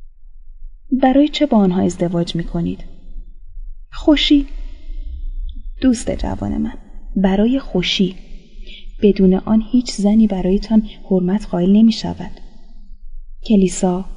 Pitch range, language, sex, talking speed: 165-205 Hz, Persian, female, 95 wpm